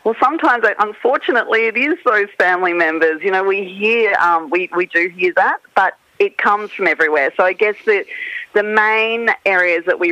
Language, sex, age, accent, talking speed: English, female, 40-59, Australian, 190 wpm